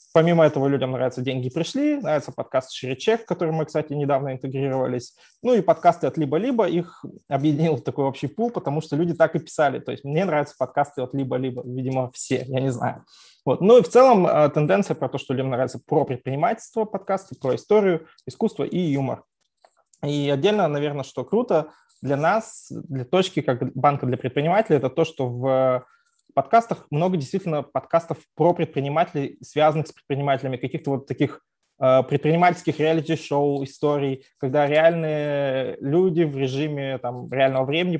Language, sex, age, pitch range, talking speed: Russian, male, 20-39, 135-165 Hz, 165 wpm